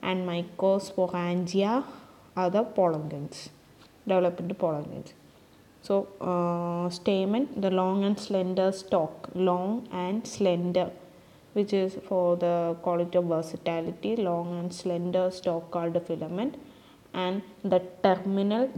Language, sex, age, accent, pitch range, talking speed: English, female, 20-39, Indian, 175-200 Hz, 110 wpm